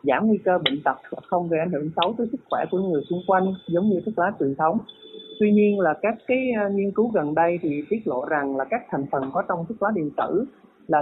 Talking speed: 260 wpm